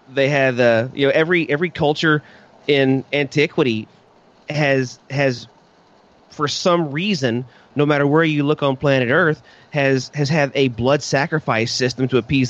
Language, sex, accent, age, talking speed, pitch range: English, male, American, 30-49, 155 wpm, 120-150 Hz